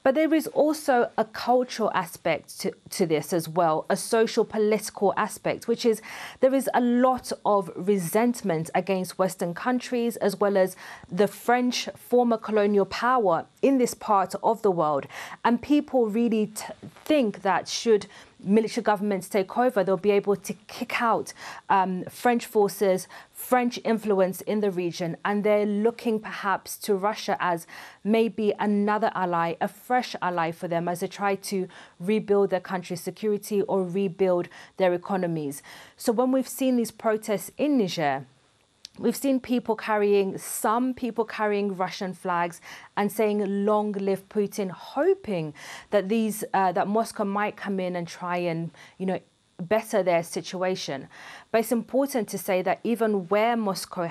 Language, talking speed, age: English, 155 wpm, 30-49